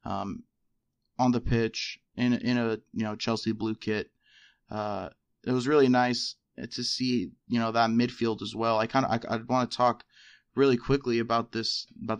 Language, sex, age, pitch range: English, male, 20-39, 110-125 Hz